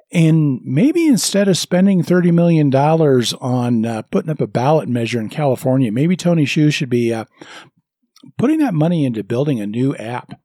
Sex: male